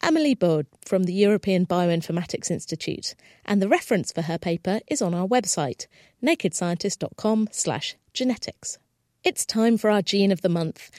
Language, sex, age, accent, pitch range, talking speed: English, female, 40-59, British, 175-240 Hz, 155 wpm